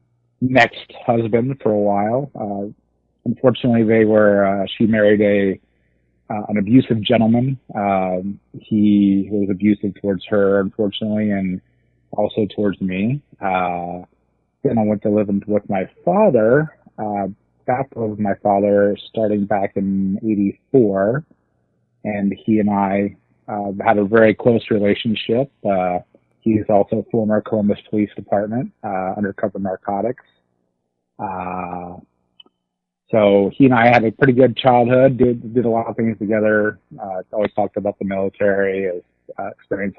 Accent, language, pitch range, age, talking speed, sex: American, English, 95-110 Hz, 30-49, 140 wpm, male